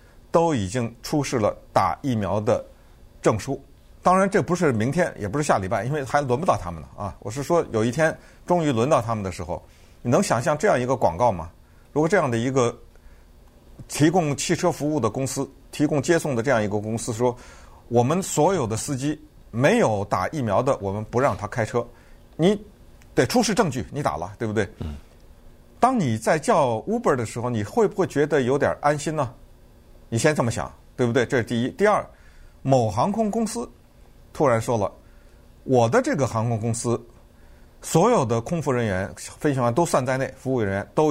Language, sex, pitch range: Chinese, male, 105-145 Hz